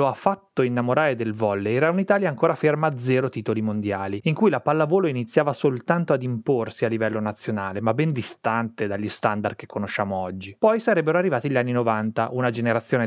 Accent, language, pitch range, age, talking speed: native, Italian, 110-170 Hz, 30-49, 190 wpm